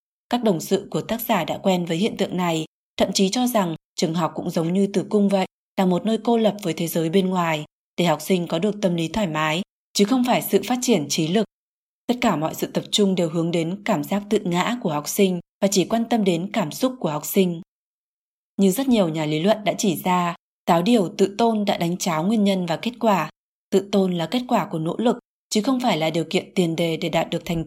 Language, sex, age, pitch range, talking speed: Vietnamese, female, 20-39, 170-215 Hz, 255 wpm